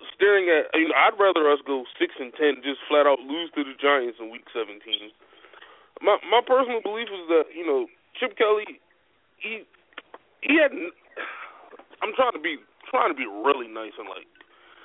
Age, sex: 20-39, male